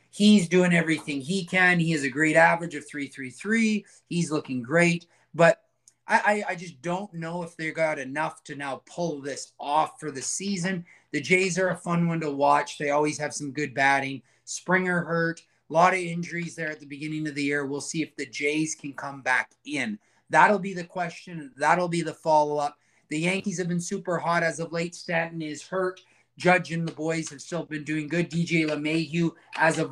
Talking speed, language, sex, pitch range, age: 210 wpm, English, male, 150-175 Hz, 30-49